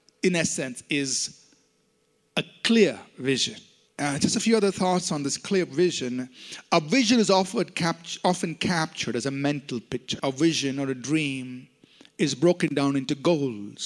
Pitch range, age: 140-205 Hz, 50-69